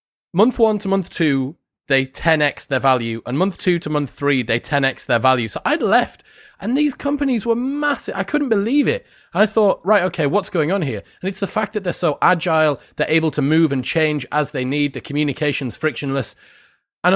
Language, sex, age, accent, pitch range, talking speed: English, male, 30-49, British, 130-185 Hz, 215 wpm